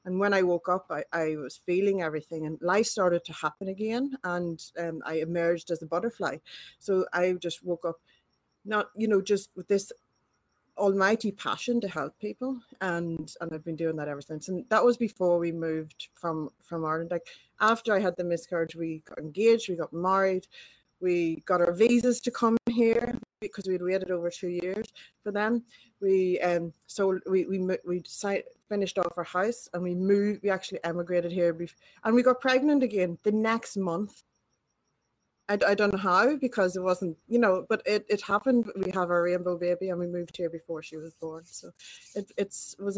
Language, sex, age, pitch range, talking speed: English, female, 30-49, 170-205 Hz, 200 wpm